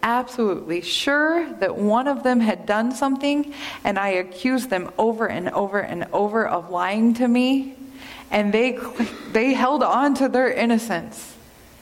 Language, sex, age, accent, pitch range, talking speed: English, female, 20-39, American, 200-245 Hz, 150 wpm